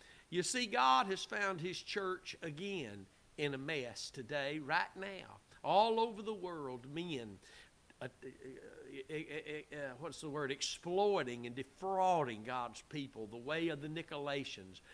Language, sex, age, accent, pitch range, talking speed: English, male, 60-79, American, 135-180 Hz, 160 wpm